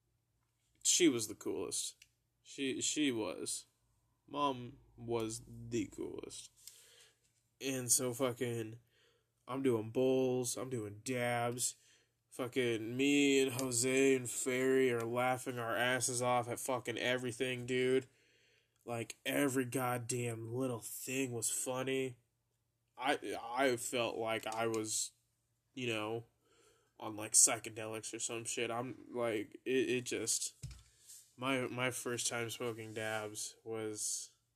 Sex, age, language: male, 20-39, English